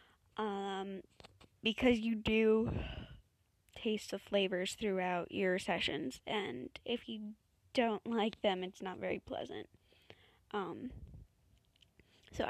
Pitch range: 210-265 Hz